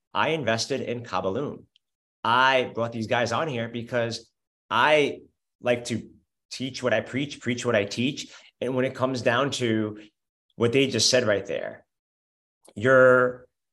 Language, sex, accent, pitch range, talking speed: English, male, American, 110-140 Hz, 155 wpm